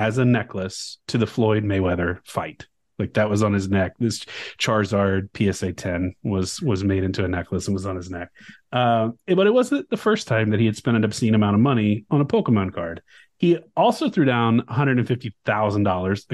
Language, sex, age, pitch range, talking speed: English, male, 30-49, 100-130 Hz, 200 wpm